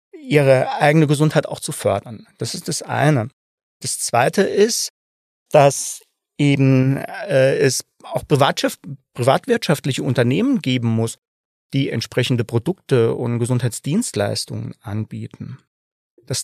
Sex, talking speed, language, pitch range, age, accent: male, 105 wpm, German, 115-160 Hz, 40-59, German